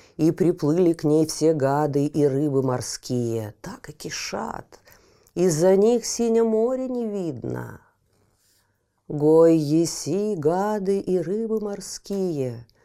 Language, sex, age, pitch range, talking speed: Russian, female, 40-59, 115-185 Hz, 110 wpm